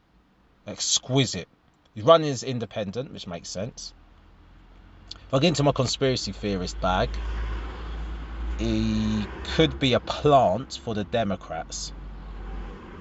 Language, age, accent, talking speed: English, 30-49, British, 110 wpm